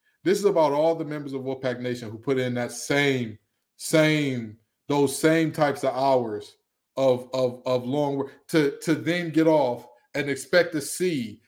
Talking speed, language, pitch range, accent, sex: 180 wpm, English, 160-260 Hz, American, male